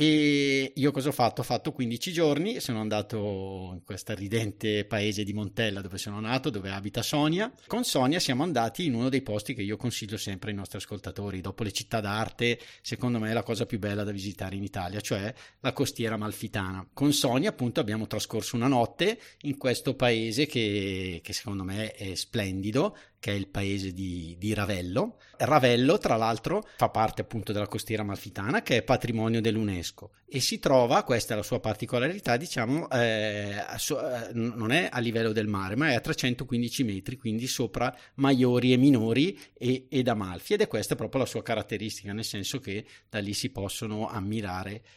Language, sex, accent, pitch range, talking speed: Italian, male, native, 105-125 Hz, 185 wpm